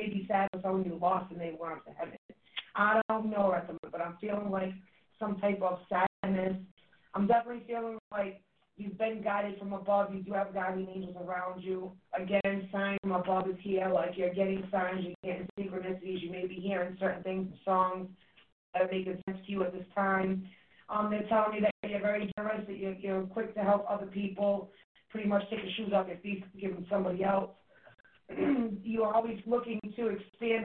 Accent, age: American, 30-49